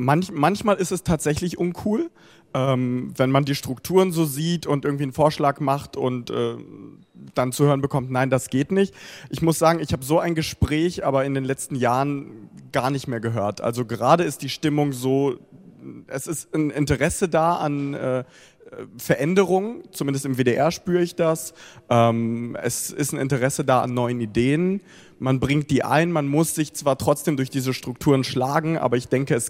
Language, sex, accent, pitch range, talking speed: German, male, German, 125-155 Hz, 180 wpm